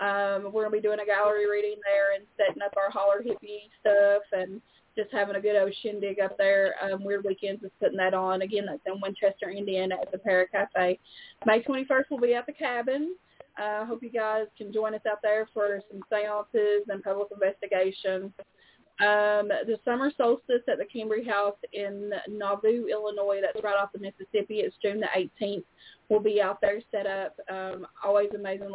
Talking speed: 190 wpm